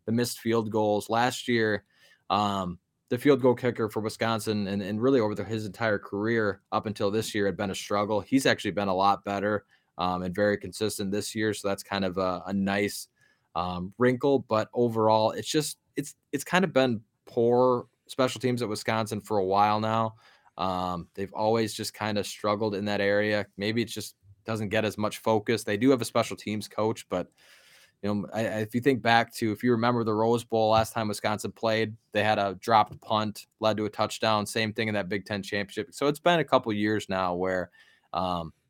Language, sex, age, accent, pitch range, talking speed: English, male, 20-39, American, 100-115 Hz, 215 wpm